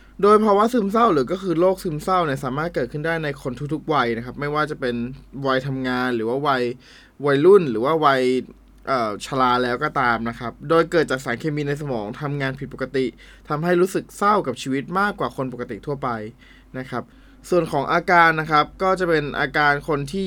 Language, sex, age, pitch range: Thai, male, 20-39, 130-165 Hz